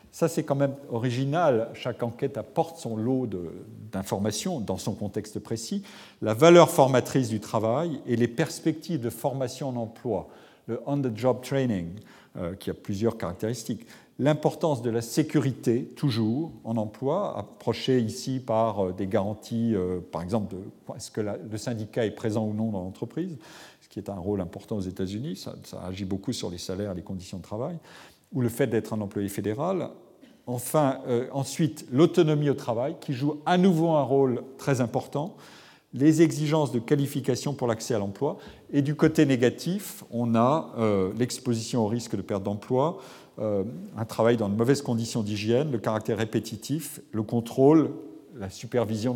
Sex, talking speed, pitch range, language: male, 175 wpm, 110-145 Hz, French